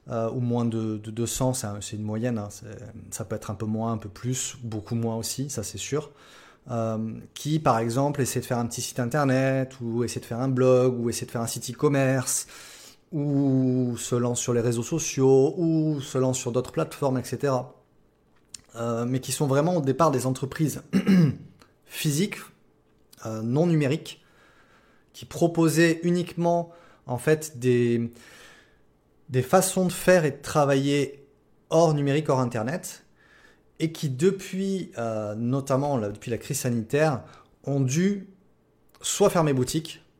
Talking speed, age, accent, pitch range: 160 wpm, 20-39, French, 120-150 Hz